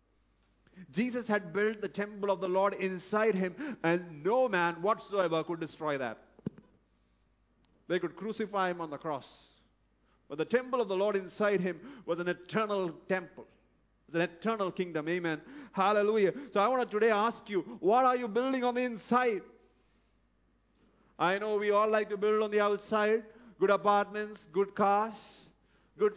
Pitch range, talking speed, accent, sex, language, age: 180-215 Hz, 165 wpm, Indian, male, English, 30-49